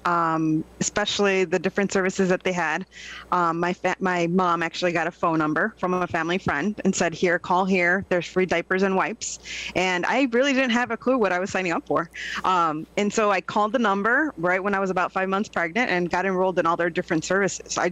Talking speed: 230 wpm